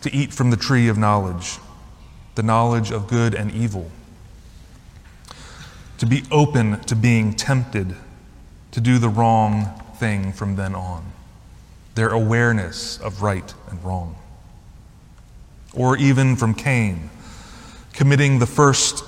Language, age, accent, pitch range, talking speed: English, 30-49, American, 100-130 Hz, 125 wpm